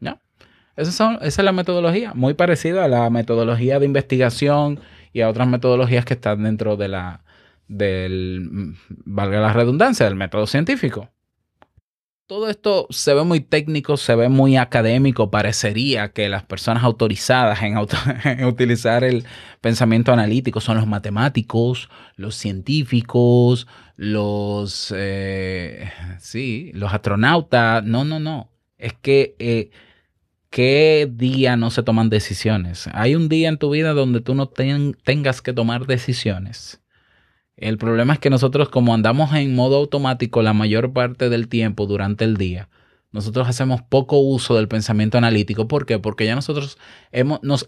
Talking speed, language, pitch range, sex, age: 140 wpm, Spanish, 105-135 Hz, male, 20-39